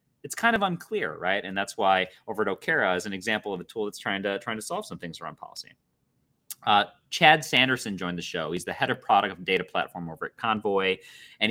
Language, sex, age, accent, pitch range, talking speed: English, male, 30-49, American, 95-145 Hz, 225 wpm